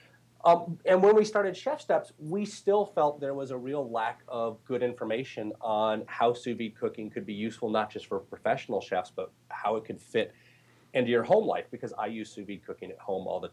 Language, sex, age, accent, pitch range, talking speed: English, male, 30-49, American, 110-155 Hz, 215 wpm